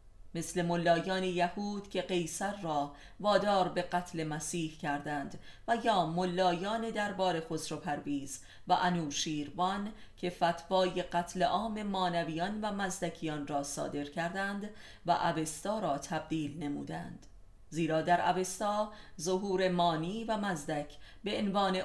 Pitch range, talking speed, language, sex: 150-190 Hz, 120 wpm, Persian, female